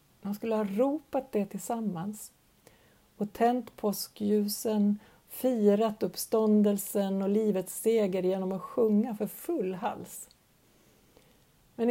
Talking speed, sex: 105 wpm, female